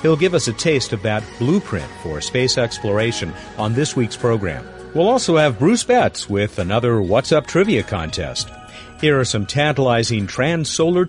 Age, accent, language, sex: 50-69, American, English, male